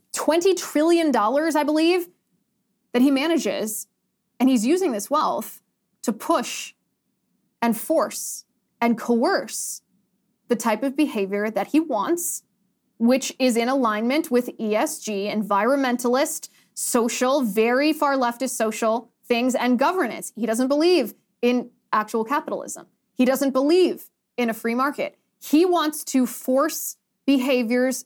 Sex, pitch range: female, 225-290 Hz